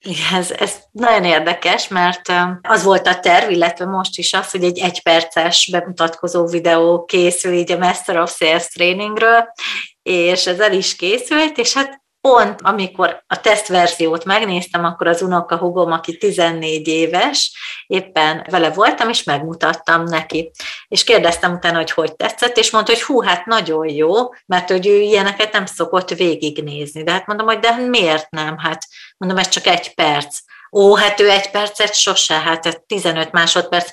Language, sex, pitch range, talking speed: Hungarian, female, 170-210 Hz, 160 wpm